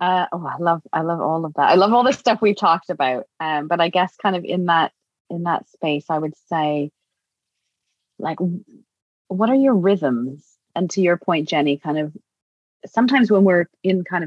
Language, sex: English, female